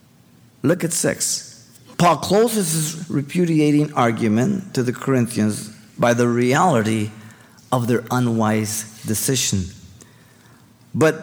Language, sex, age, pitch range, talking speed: English, male, 50-69, 115-160 Hz, 100 wpm